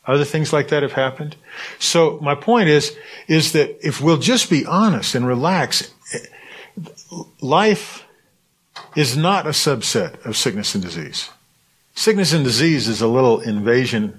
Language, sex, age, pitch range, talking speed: English, male, 50-69, 130-175 Hz, 150 wpm